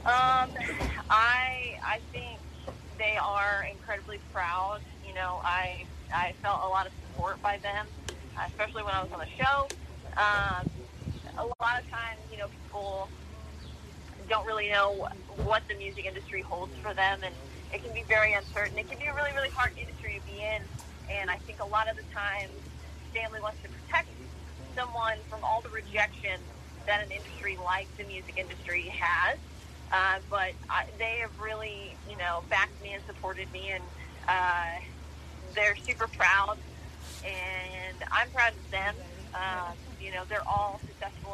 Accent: American